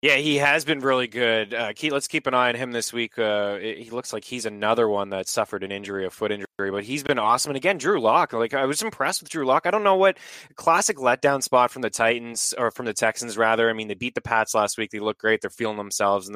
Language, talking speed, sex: English, 275 wpm, male